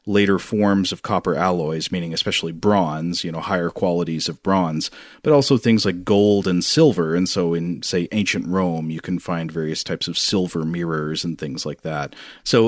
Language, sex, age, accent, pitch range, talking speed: English, male, 30-49, American, 90-110 Hz, 190 wpm